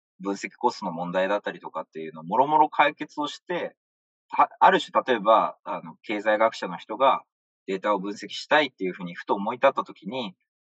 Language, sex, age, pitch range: Japanese, male, 20-39, 100-150 Hz